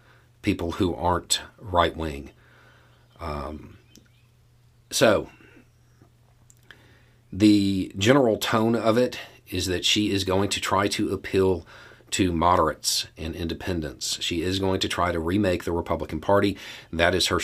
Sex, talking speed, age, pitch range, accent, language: male, 130 wpm, 40-59, 85-110 Hz, American, English